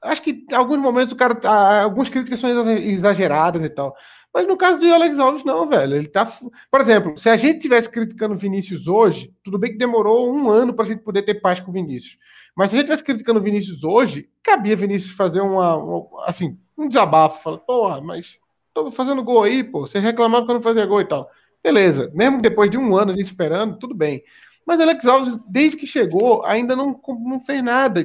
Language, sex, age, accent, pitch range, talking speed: Portuguese, male, 20-39, Brazilian, 165-240 Hz, 225 wpm